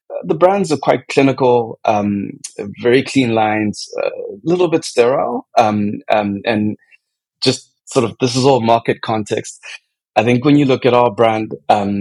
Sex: male